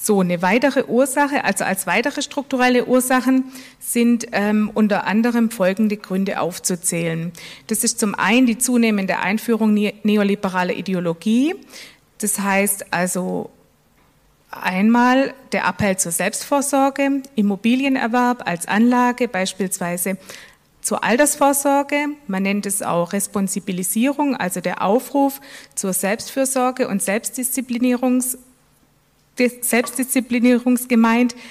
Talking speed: 100 wpm